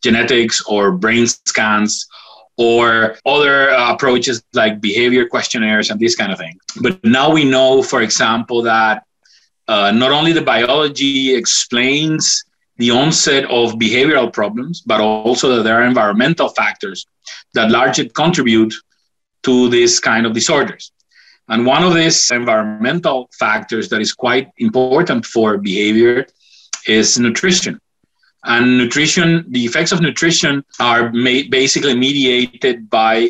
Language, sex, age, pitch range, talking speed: English, male, 30-49, 115-145 Hz, 130 wpm